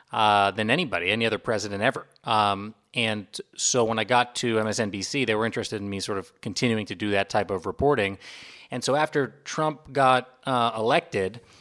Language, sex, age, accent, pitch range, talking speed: English, male, 30-49, American, 105-120 Hz, 185 wpm